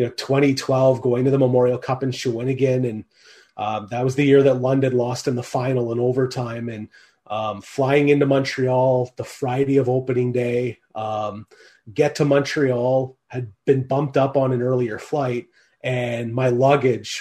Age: 30-49